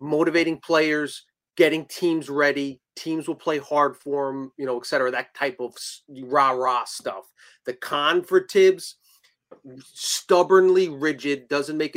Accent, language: American, English